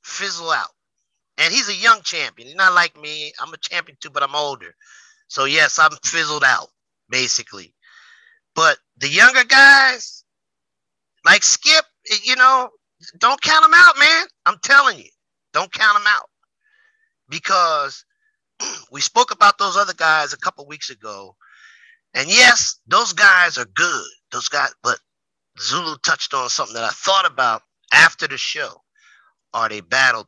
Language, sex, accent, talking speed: English, male, American, 155 wpm